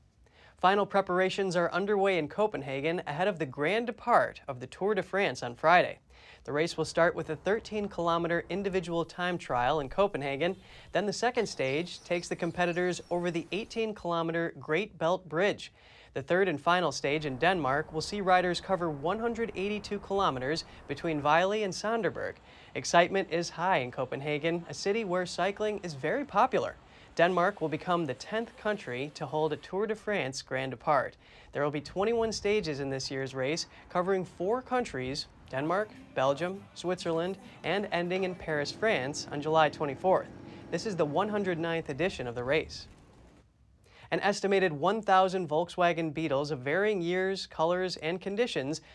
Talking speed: 155 wpm